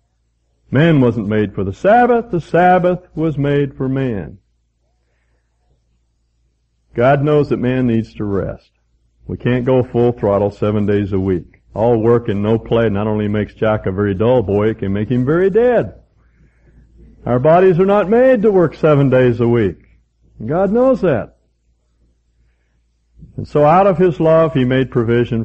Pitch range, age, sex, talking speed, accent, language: 95-155 Hz, 60-79, male, 165 wpm, American, English